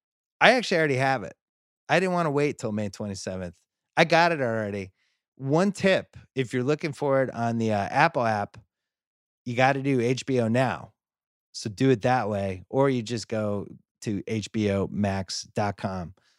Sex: male